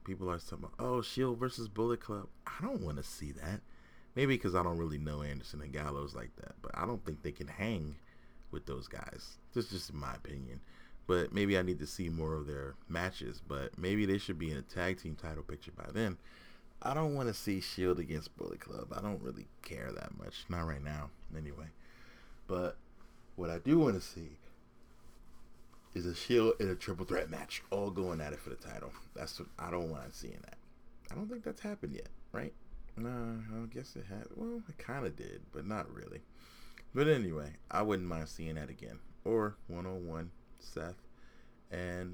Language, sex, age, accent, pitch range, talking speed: English, male, 30-49, American, 75-105 Hz, 205 wpm